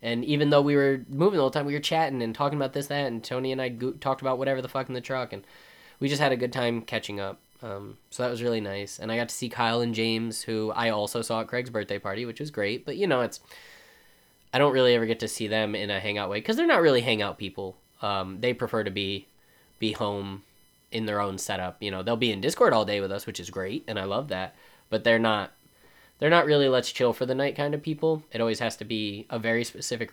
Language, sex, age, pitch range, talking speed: English, male, 20-39, 105-135 Hz, 270 wpm